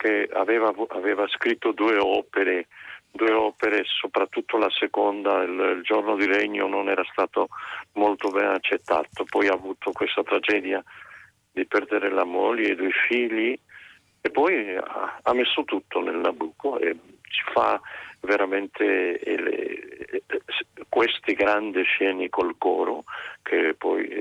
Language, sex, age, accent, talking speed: Italian, male, 50-69, native, 140 wpm